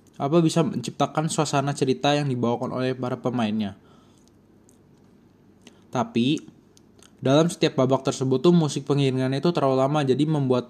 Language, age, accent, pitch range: Indonesian, 20-39, native, 125-150 Hz